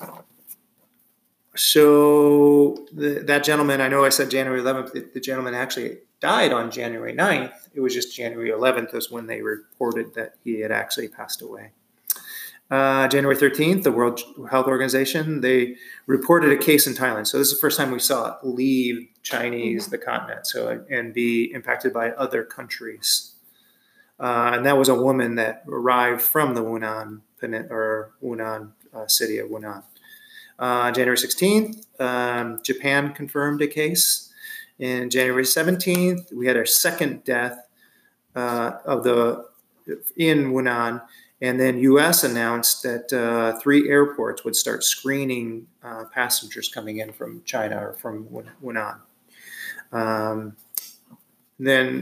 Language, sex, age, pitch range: English, male, 30-49, 120-140 Hz